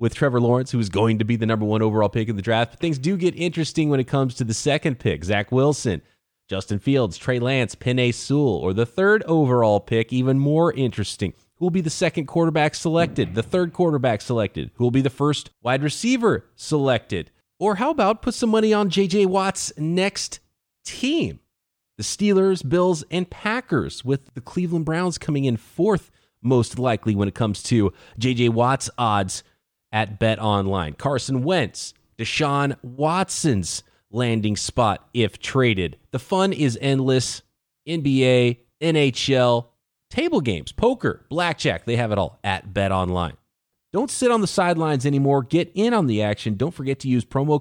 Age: 30-49